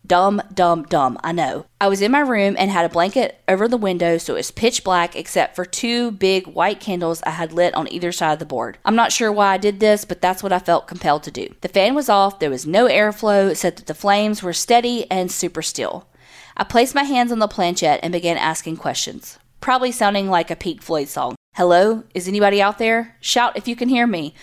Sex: female